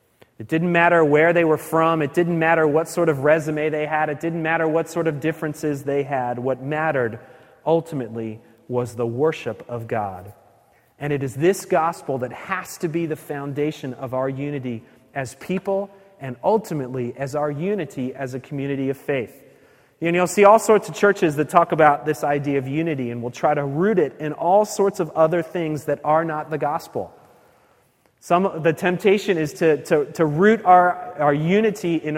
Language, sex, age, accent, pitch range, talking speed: English, male, 30-49, American, 145-190 Hz, 190 wpm